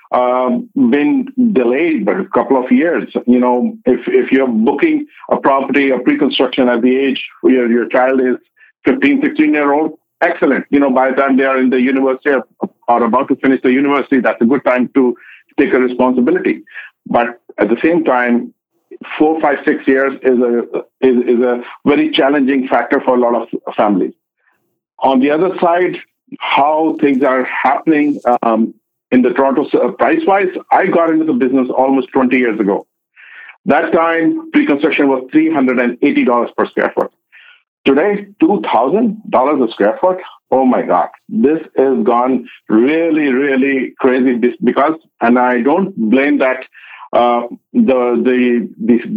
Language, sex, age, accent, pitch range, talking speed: English, male, 50-69, Indian, 125-170 Hz, 160 wpm